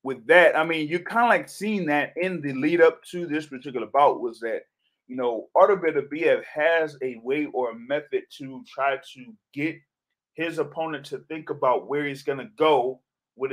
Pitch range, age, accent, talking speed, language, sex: 135-175 Hz, 30-49, American, 200 wpm, English, male